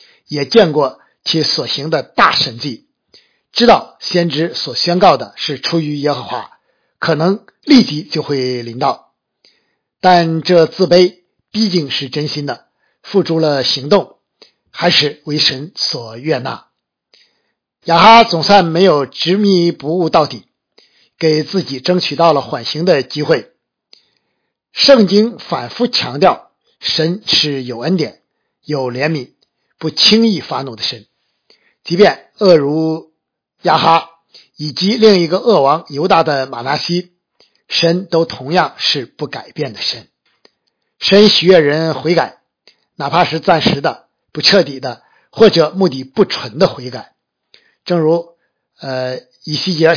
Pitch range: 145-185 Hz